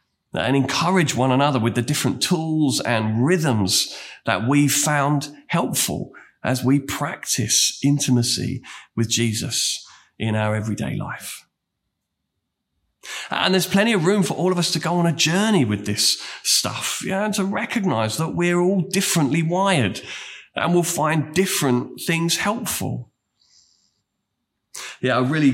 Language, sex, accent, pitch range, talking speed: English, male, British, 120-160 Hz, 135 wpm